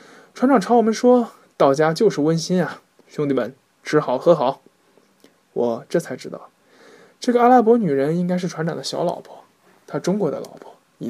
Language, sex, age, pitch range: Chinese, male, 20-39, 145-205 Hz